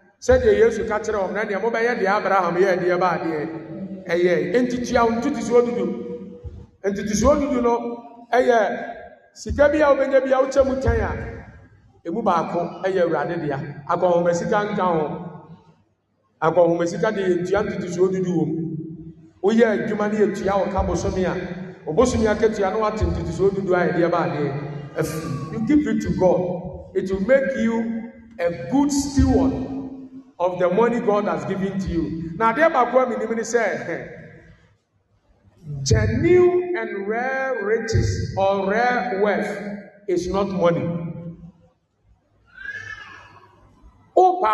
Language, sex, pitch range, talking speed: English, male, 170-235 Hz, 75 wpm